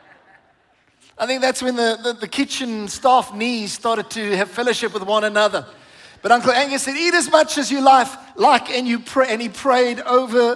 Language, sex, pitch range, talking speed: English, male, 215-265 Hz, 180 wpm